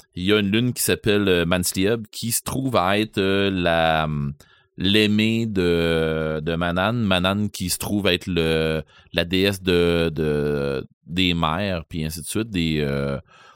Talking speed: 165 wpm